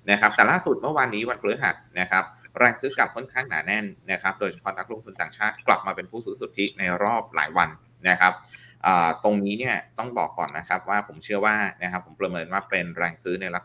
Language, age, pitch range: Thai, 20-39, 90-100 Hz